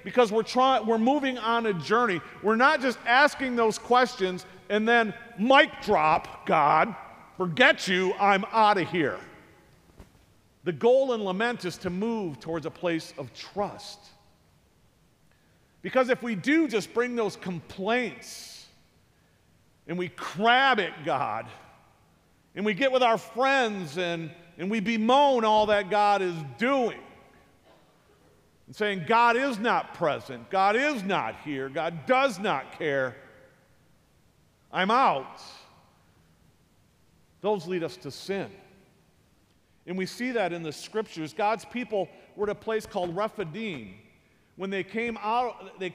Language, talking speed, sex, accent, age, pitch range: English, 135 wpm, male, American, 50-69, 185-240 Hz